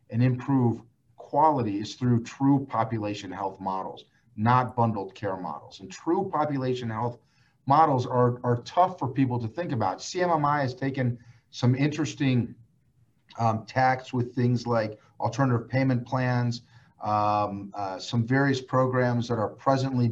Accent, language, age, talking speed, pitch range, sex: American, English, 40-59, 140 wpm, 115-135 Hz, male